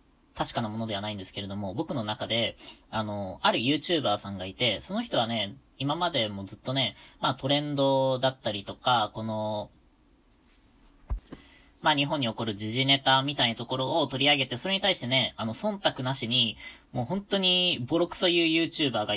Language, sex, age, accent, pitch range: Japanese, female, 20-39, native, 110-150 Hz